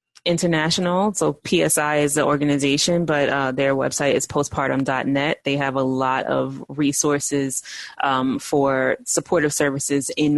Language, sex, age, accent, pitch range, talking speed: English, female, 20-39, American, 135-155 Hz, 135 wpm